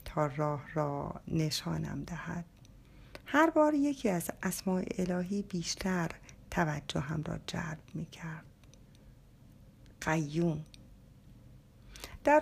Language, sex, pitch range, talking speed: Persian, female, 170-240 Hz, 90 wpm